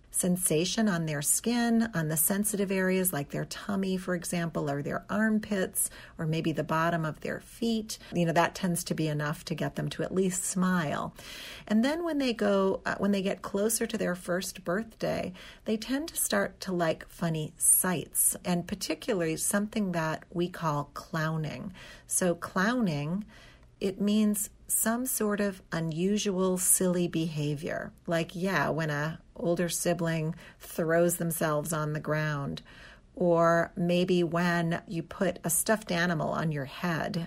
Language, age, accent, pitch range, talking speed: English, 40-59, American, 165-200 Hz, 160 wpm